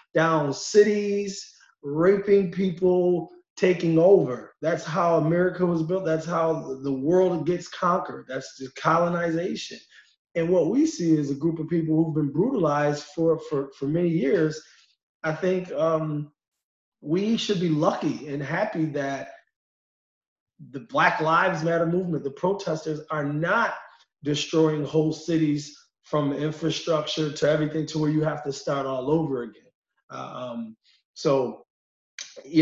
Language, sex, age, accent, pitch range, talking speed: English, male, 30-49, American, 145-180 Hz, 135 wpm